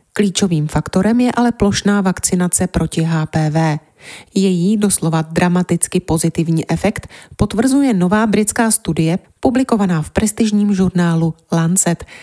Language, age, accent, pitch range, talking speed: Czech, 30-49, native, 160-205 Hz, 110 wpm